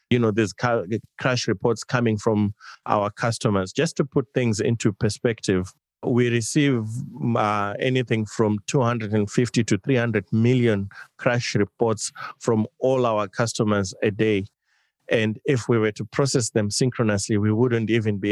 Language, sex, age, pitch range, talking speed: English, male, 30-49, 105-125 Hz, 145 wpm